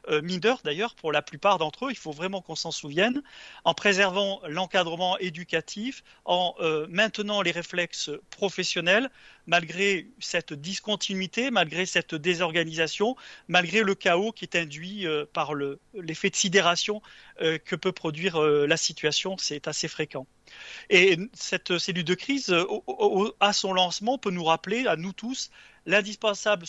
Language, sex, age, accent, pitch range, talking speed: French, male, 40-59, French, 170-205 Hz, 135 wpm